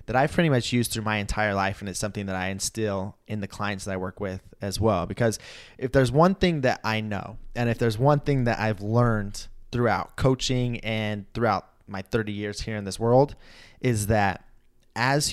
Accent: American